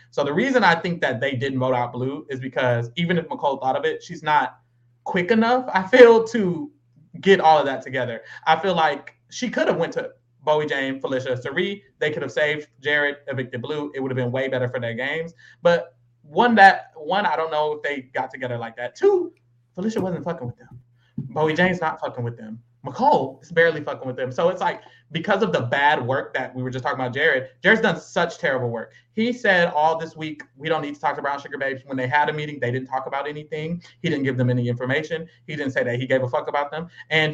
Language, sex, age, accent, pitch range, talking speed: English, male, 20-39, American, 130-180 Hz, 245 wpm